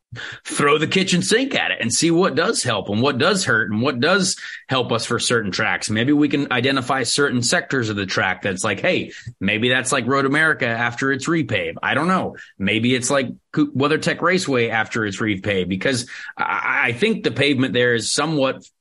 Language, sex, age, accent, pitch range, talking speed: English, male, 30-49, American, 115-155 Hz, 200 wpm